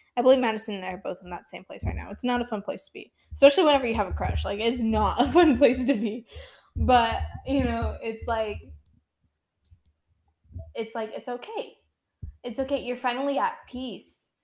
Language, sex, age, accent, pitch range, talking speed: English, female, 10-29, American, 180-240 Hz, 205 wpm